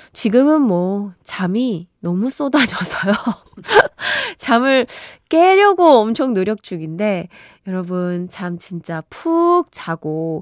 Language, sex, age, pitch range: Korean, female, 20-39, 185-285 Hz